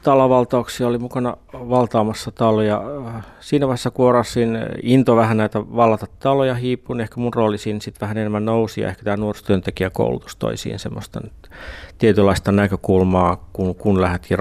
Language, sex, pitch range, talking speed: Finnish, male, 100-115 Hz, 140 wpm